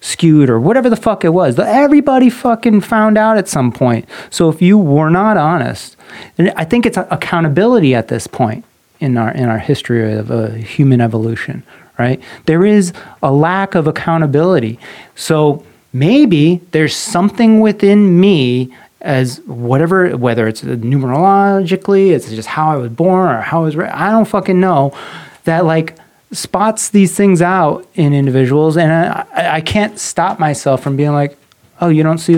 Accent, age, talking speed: American, 30-49, 170 wpm